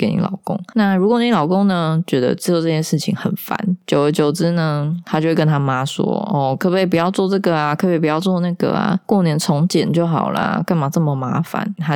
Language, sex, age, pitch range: Chinese, female, 20-39, 150-200 Hz